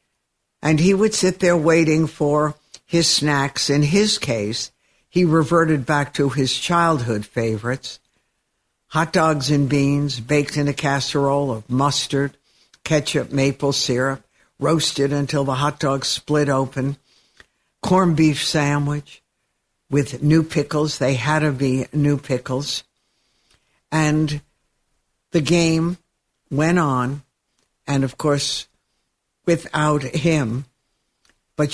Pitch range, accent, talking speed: 130-155 Hz, American, 115 wpm